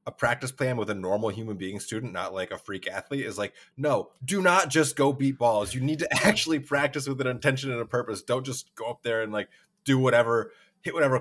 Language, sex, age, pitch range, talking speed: English, male, 20-39, 110-155 Hz, 245 wpm